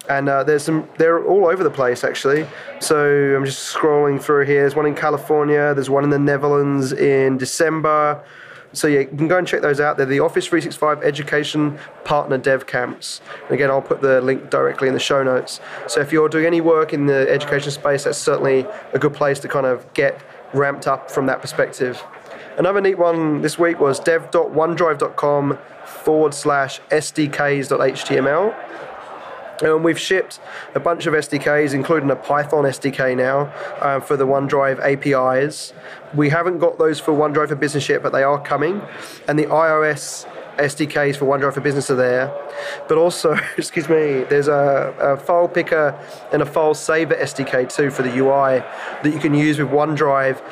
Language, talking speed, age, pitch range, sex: English, 180 wpm, 30-49, 140-155 Hz, male